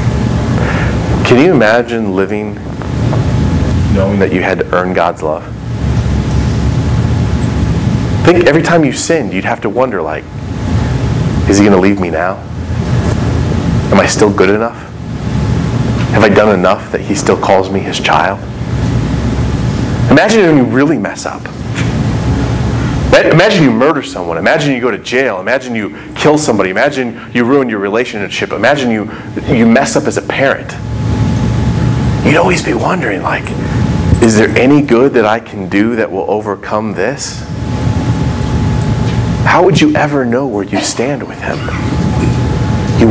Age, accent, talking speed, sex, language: 30-49, American, 145 wpm, male, English